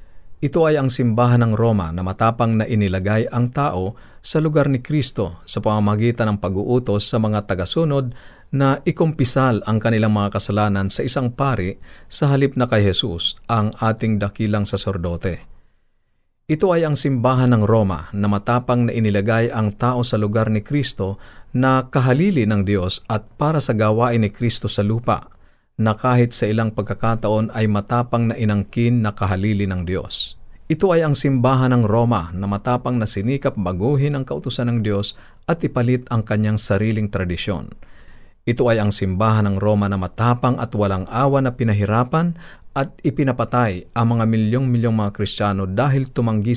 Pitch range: 100-125 Hz